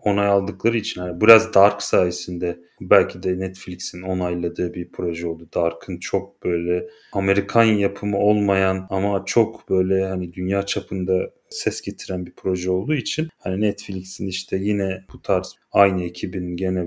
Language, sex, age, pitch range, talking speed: Turkish, male, 30-49, 90-110 Hz, 145 wpm